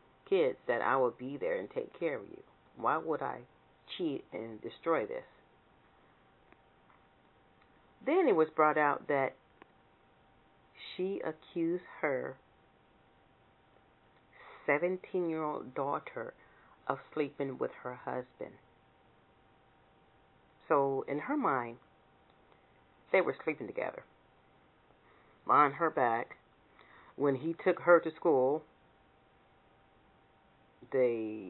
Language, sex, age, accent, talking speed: English, female, 40-59, American, 100 wpm